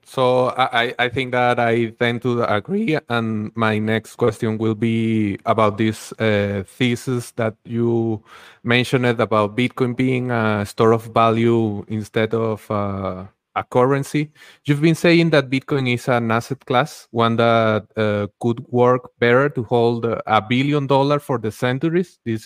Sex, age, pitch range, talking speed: male, 30-49, 115-135 Hz, 150 wpm